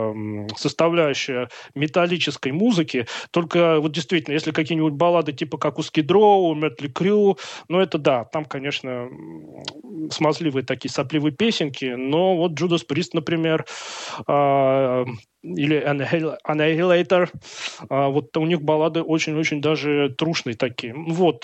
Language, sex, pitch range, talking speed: Russian, male, 140-170 Hz, 110 wpm